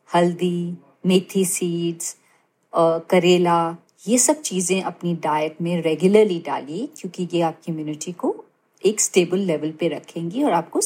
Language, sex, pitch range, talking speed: Hindi, female, 170-210 Hz, 135 wpm